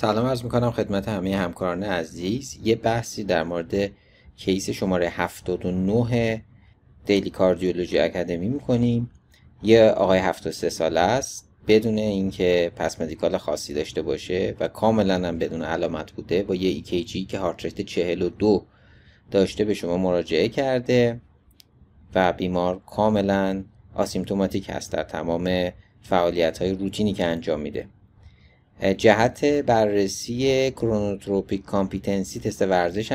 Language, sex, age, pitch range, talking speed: Persian, male, 30-49, 90-110 Hz, 120 wpm